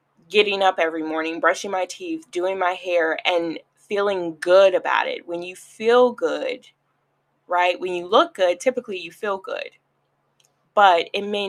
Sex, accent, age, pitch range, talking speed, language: female, American, 20-39, 165-195 Hz, 160 wpm, English